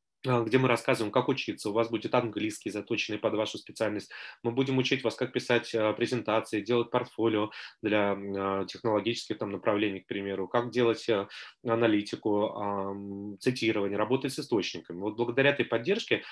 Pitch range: 110-135 Hz